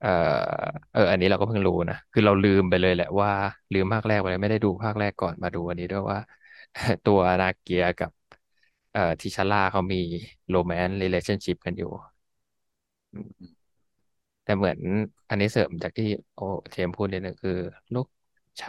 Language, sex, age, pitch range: Thai, male, 20-39, 90-105 Hz